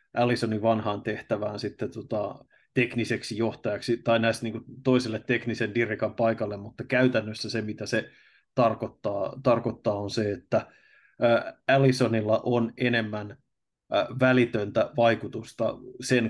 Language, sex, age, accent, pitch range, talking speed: Finnish, male, 20-39, native, 110-120 Hz, 120 wpm